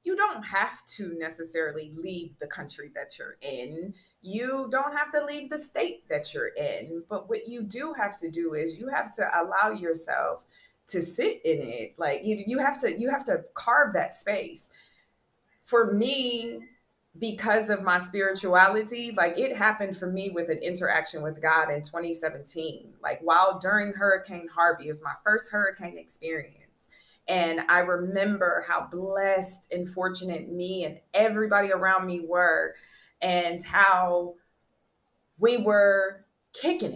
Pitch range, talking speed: 170-215 Hz, 155 wpm